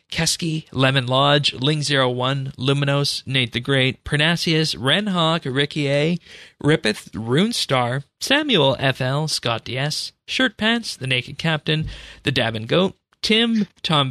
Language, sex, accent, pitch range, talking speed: English, male, American, 115-150 Hz, 130 wpm